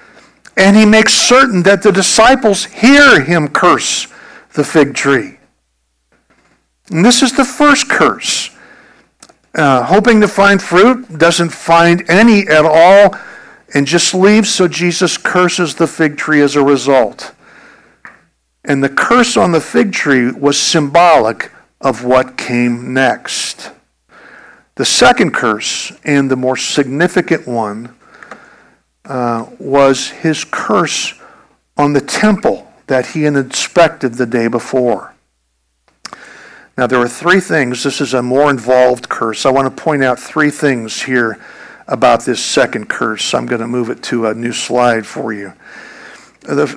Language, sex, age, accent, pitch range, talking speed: English, male, 50-69, American, 125-180 Hz, 140 wpm